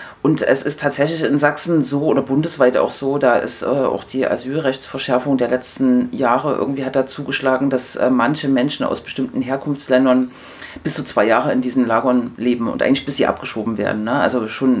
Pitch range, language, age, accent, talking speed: 125-145 Hz, German, 40-59, German, 195 wpm